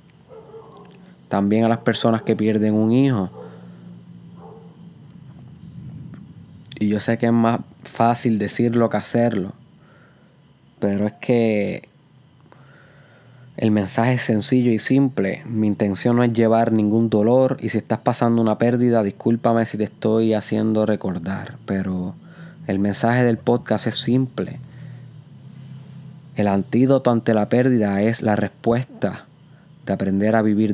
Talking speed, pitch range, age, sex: 125 wpm, 110-135 Hz, 20-39, male